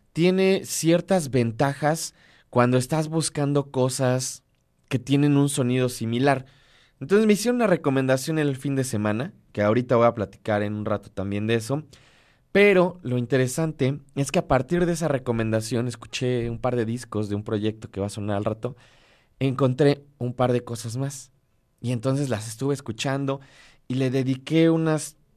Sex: male